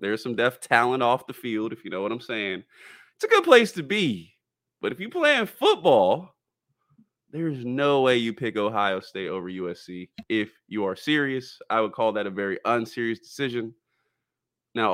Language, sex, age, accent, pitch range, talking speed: English, male, 20-39, American, 110-160 Hz, 185 wpm